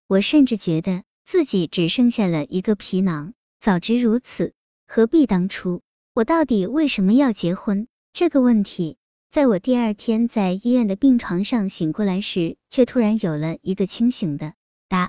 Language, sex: Chinese, male